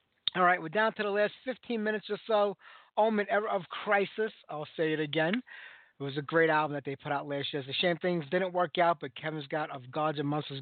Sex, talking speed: male, 250 wpm